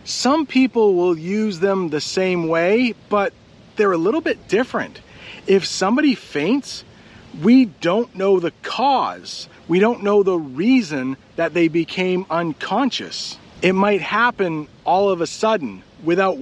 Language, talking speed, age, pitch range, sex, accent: English, 145 wpm, 40-59, 170-225 Hz, male, American